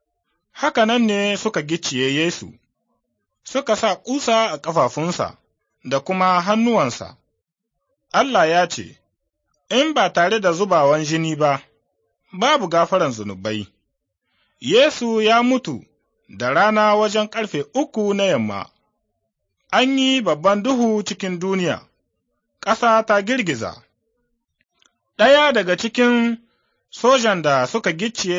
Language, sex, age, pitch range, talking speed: Arabic, male, 30-49, 170-230 Hz, 100 wpm